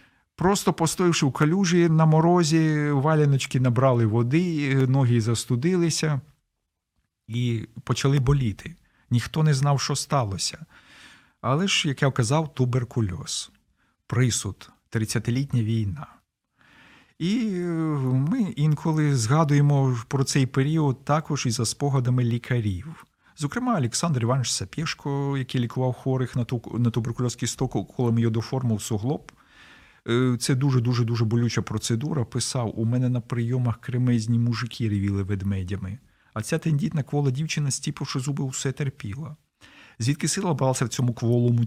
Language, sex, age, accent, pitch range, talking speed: Ukrainian, male, 50-69, native, 120-145 Hz, 125 wpm